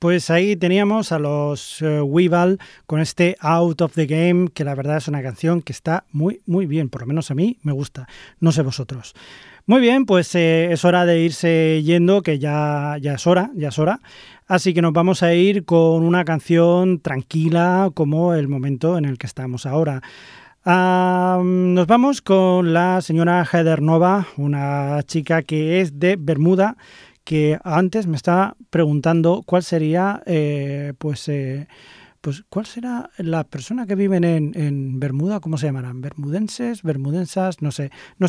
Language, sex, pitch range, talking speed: Spanish, male, 150-185 Hz, 170 wpm